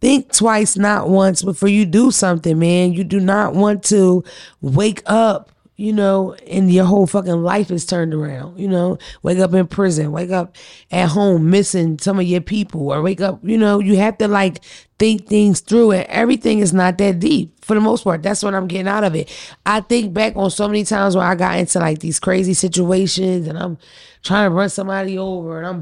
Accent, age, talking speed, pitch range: American, 20-39, 220 wpm, 180-215 Hz